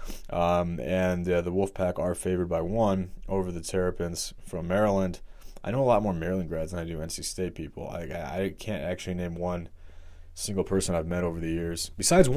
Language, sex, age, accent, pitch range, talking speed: English, male, 30-49, American, 85-105 Hz, 200 wpm